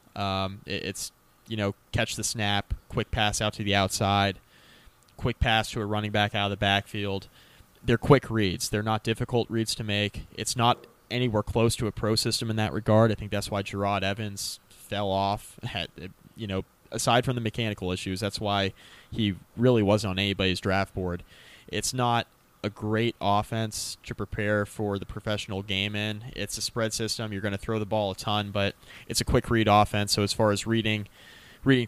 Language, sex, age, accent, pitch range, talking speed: English, male, 20-39, American, 100-110 Hz, 195 wpm